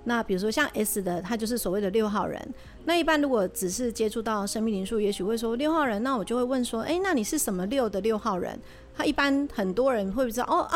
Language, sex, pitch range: Chinese, female, 190-255 Hz